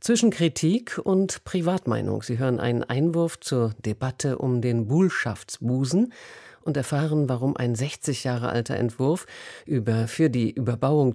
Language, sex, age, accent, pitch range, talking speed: German, female, 50-69, German, 125-160 Hz, 130 wpm